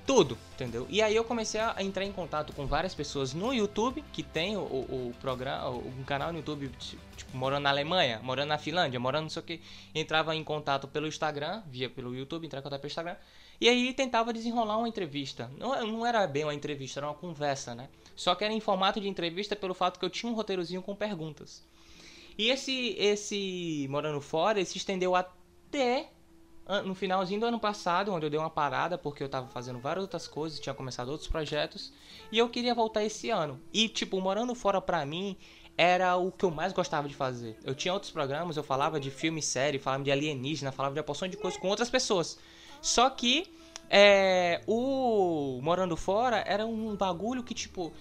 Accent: Brazilian